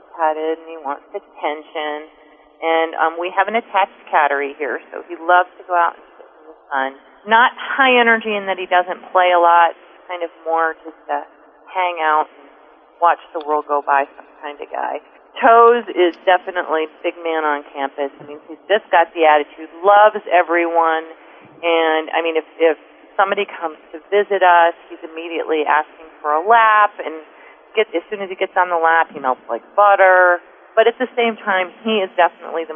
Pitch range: 150-185 Hz